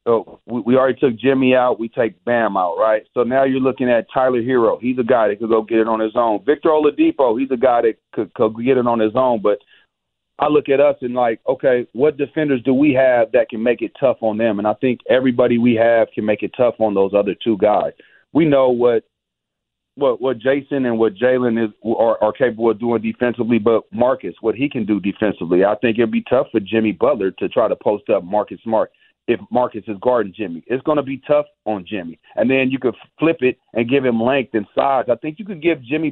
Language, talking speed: English, 240 wpm